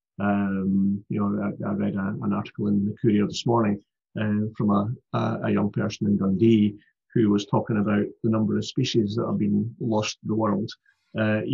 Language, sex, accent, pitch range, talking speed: English, male, British, 100-115 Hz, 205 wpm